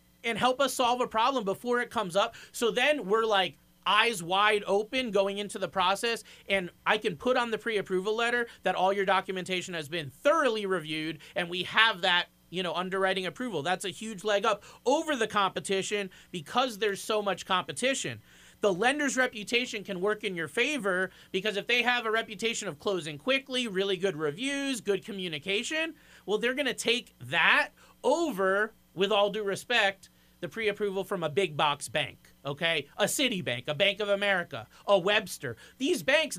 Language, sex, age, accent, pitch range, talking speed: English, male, 30-49, American, 180-235 Hz, 180 wpm